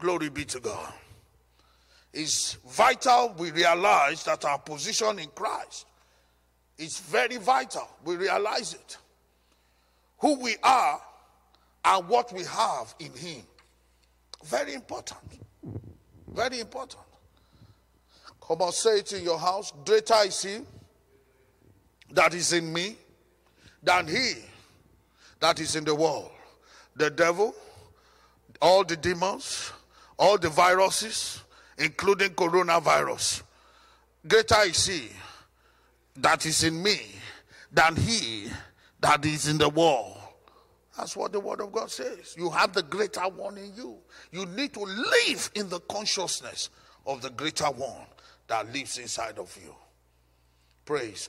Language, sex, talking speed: English, male, 125 wpm